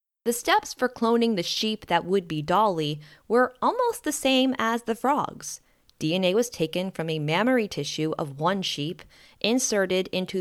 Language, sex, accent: English, female, American